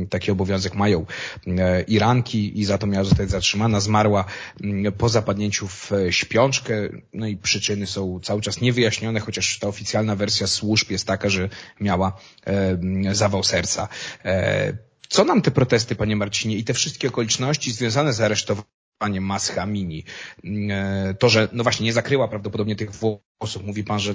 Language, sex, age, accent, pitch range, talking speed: Polish, male, 30-49, native, 100-125 Hz, 145 wpm